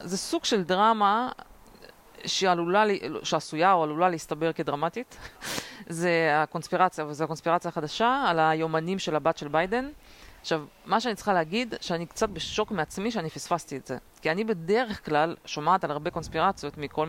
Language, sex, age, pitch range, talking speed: Hebrew, female, 30-49, 155-190 Hz, 150 wpm